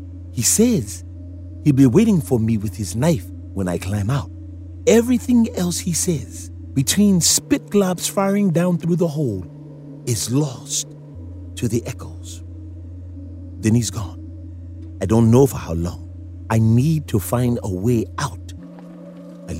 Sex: male